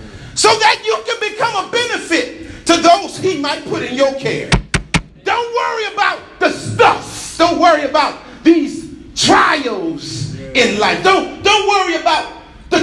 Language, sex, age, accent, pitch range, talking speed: English, male, 40-59, American, 225-330 Hz, 150 wpm